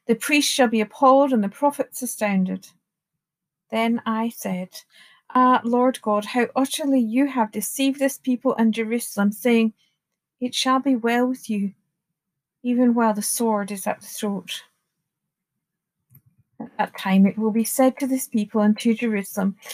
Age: 40-59